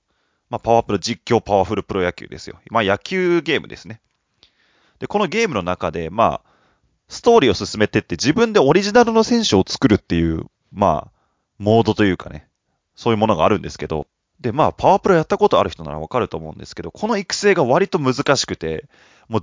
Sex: male